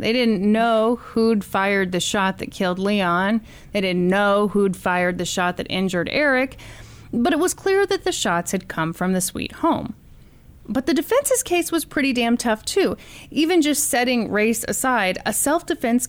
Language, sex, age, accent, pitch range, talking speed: English, female, 30-49, American, 185-260 Hz, 185 wpm